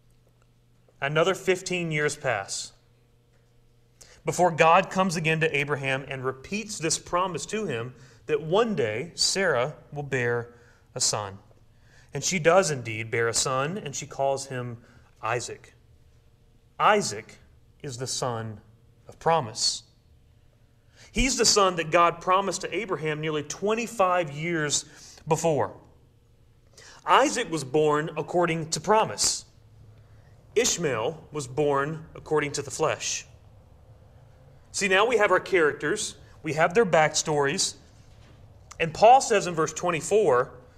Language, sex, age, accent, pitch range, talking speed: English, male, 30-49, American, 115-170 Hz, 120 wpm